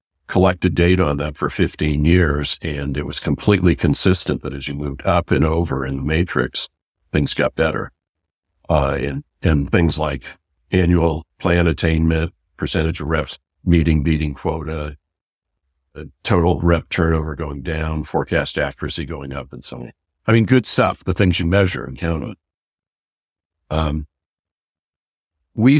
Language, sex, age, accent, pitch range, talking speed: English, male, 60-79, American, 75-90 Hz, 150 wpm